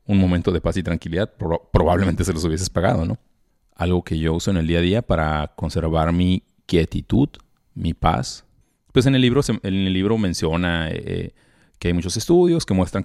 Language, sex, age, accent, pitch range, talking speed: Spanish, male, 30-49, Mexican, 85-100 Hz, 185 wpm